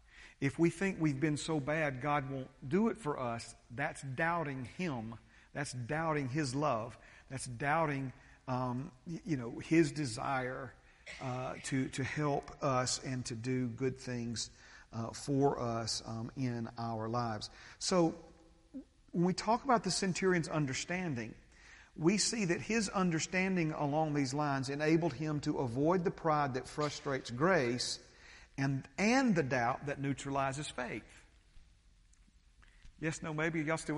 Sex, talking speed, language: male, 145 wpm, English